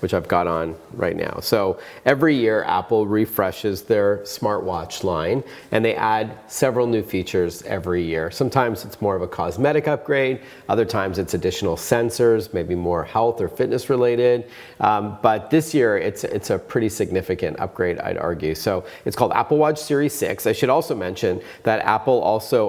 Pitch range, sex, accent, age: 95-125 Hz, male, American, 40-59